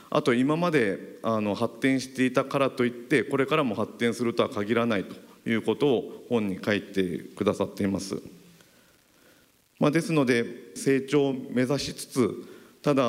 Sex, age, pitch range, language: male, 40-59, 100-145 Hz, Japanese